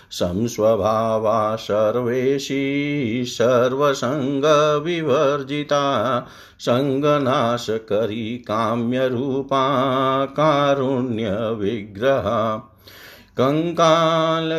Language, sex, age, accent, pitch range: Hindi, male, 50-69, native, 115-150 Hz